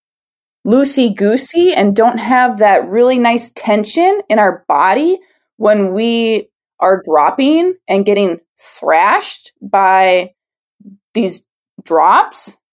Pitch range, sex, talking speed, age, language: 180-255 Hz, female, 100 wpm, 20-39, English